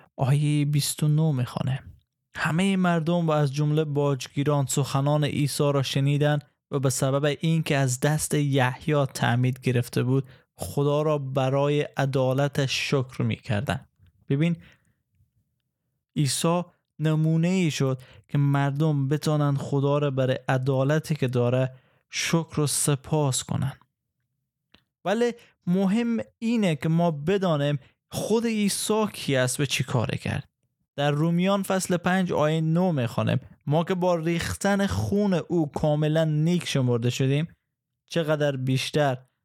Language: Persian